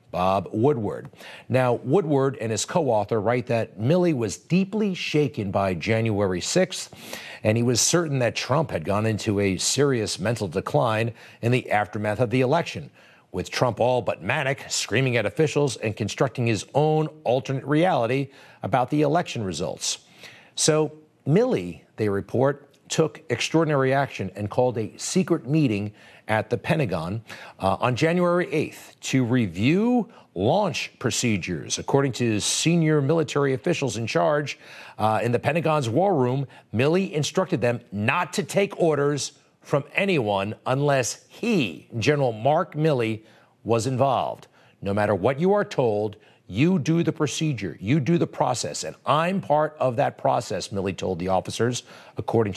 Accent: American